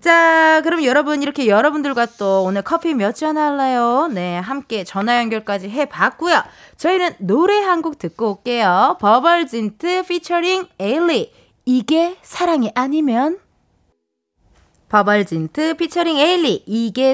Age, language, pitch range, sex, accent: 20-39, Korean, 215-335 Hz, female, native